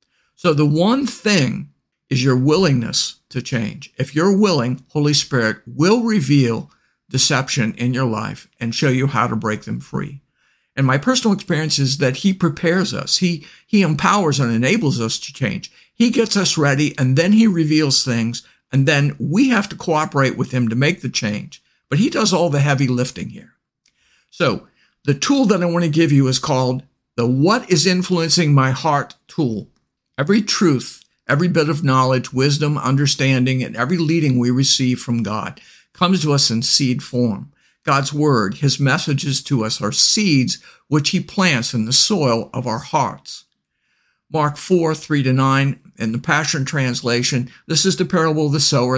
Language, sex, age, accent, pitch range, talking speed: English, male, 50-69, American, 130-165 Hz, 180 wpm